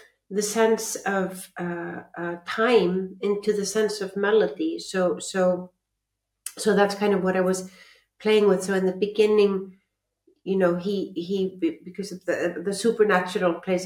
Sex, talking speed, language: female, 155 wpm, English